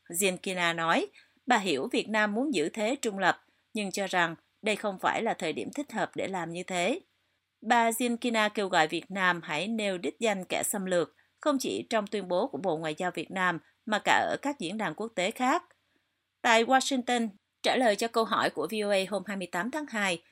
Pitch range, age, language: 180-245 Hz, 30-49, Vietnamese